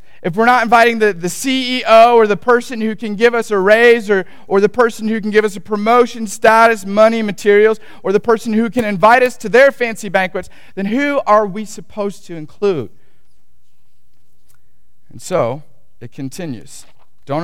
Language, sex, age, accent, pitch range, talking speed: English, male, 40-59, American, 140-220 Hz, 180 wpm